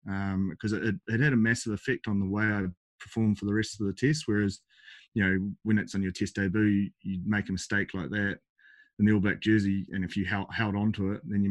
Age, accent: 20-39, Australian